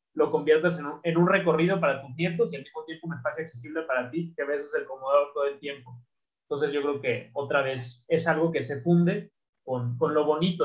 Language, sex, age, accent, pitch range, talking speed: Spanish, male, 30-49, Mexican, 140-165 Hz, 250 wpm